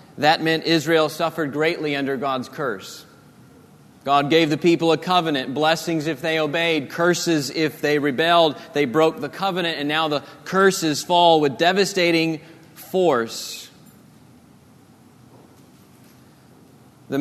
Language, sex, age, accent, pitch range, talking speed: English, male, 40-59, American, 145-175 Hz, 120 wpm